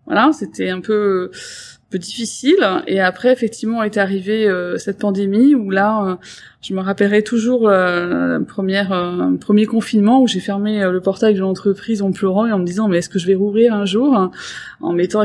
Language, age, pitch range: French, 20-39, 180-215 Hz